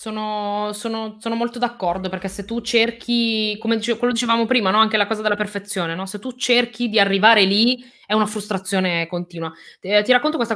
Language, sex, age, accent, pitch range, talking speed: Italian, female, 20-39, native, 180-230 Hz, 200 wpm